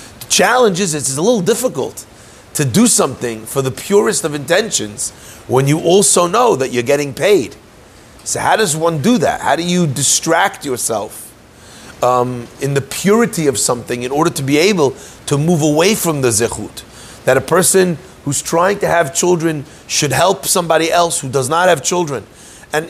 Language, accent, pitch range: English, American, 135-175 Hz